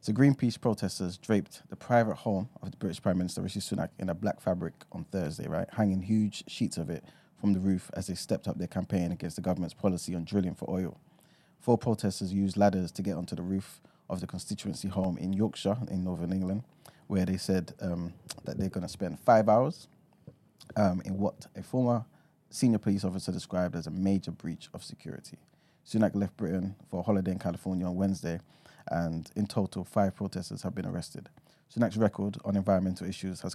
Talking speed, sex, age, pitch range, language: 195 wpm, male, 20-39, 90-105 Hz, English